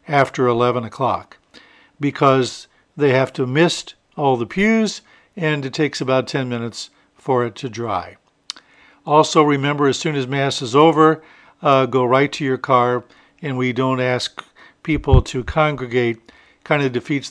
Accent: American